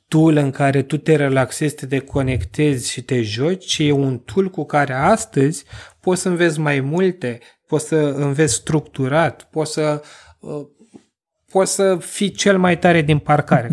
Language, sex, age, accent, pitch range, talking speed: Romanian, male, 20-39, native, 125-165 Hz, 160 wpm